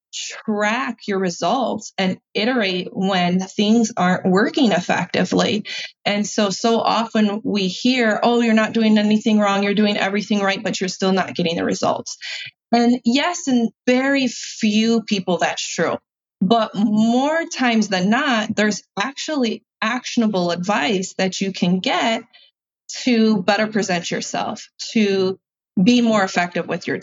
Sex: female